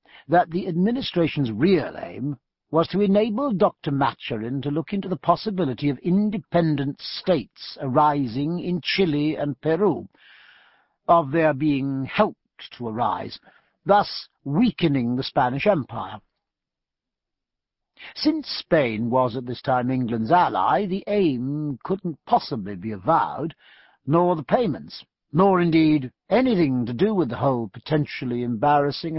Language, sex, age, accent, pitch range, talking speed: English, male, 60-79, British, 135-185 Hz, 125 wpm